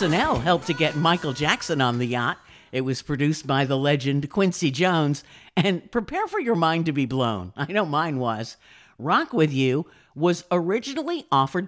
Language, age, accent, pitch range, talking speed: English, 50-69, American, 130-200 Hz, 180 wpm